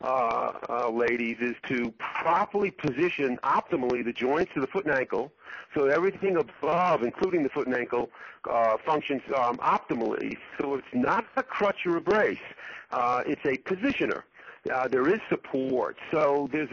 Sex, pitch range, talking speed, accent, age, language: male, 130-190 Hz, 160 wpm, American, 50-69, English